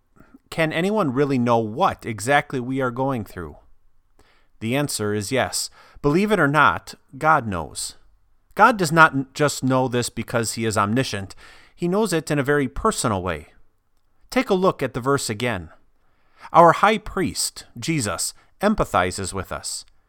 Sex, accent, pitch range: male, American, 105-150 Hz